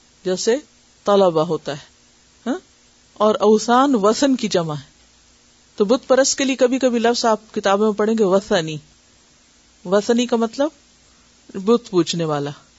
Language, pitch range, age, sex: Urdu, 195-255 Hz, 50-69, female